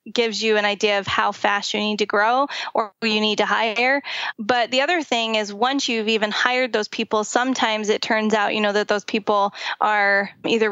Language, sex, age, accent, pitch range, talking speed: English, female, 20-39, American, 215-250 Hz, 220 wpm